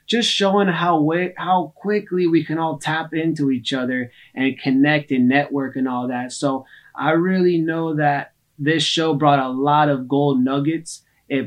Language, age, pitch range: English, 20-39, 140-170 Hz